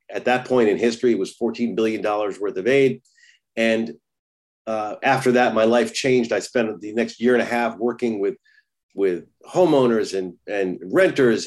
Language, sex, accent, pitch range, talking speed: English, male, American, 110-135 Hz, 180 wpm